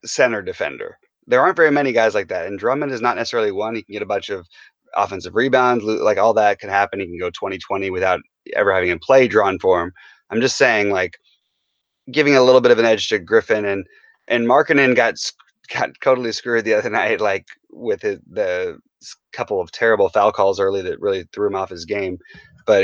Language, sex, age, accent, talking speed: English, male, 30-49, American, 215 wpm